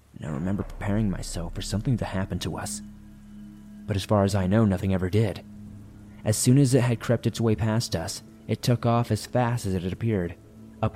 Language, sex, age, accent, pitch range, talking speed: English, male, 20-39, American, 95-115 Hz, 220 wpm